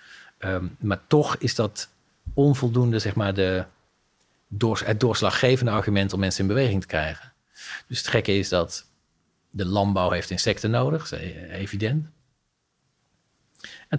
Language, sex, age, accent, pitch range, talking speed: Dutch, male, 40-59, Dutch, 90-110 Hz, 130 wpm